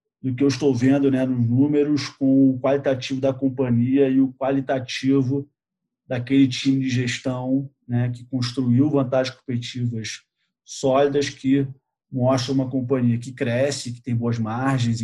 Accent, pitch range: Brazilian, 120-135 Hz